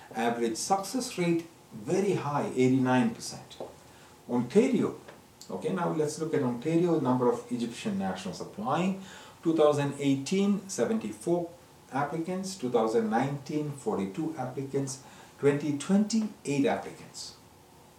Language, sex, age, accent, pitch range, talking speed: English, male, 50-69, Indian, 115-170 Hz, 90 wpm